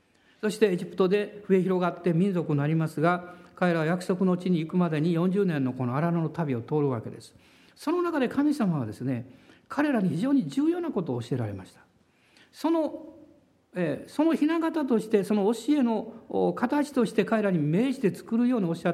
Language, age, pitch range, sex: Japanese, 60-79, 145-235 Hz, male